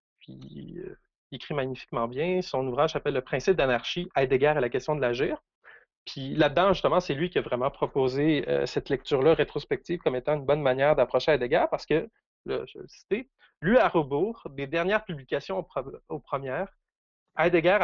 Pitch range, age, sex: 135-180 Hz, 30-49, male